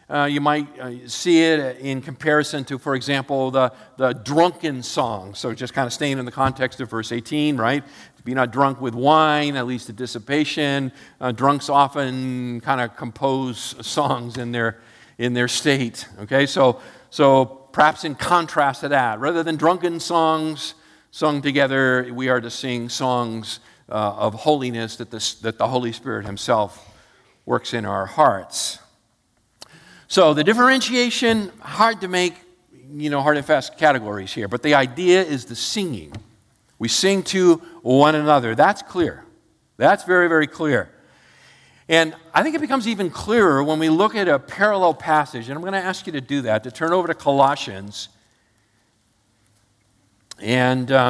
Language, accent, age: English, American, 50-69